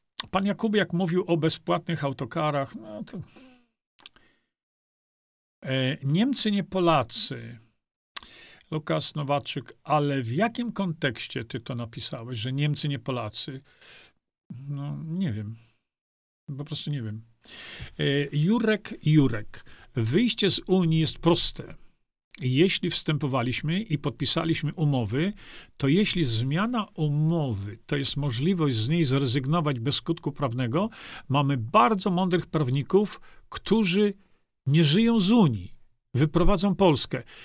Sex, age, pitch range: male, 50-69, 135-190 Hz